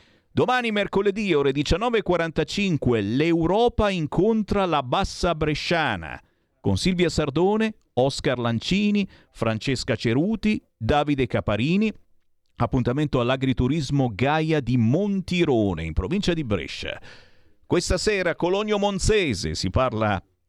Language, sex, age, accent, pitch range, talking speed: Italian, male, 50-69, native, 100-150 Hz, 100 wpm